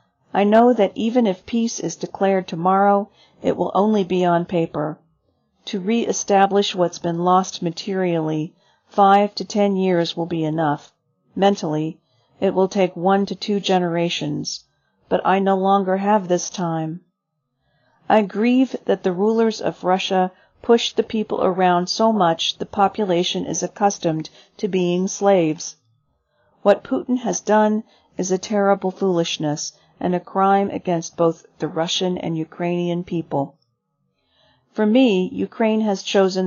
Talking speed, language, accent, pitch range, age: 140 wpm, English, American, 165-200 Hz, 40-59